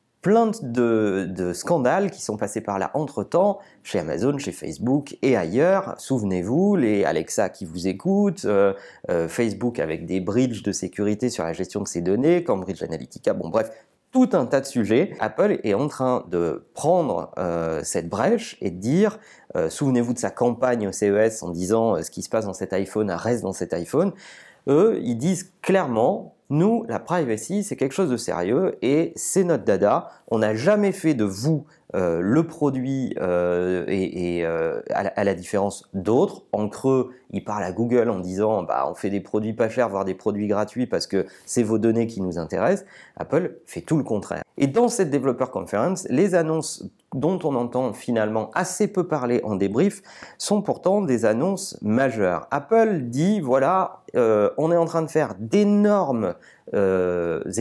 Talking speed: 190 wpm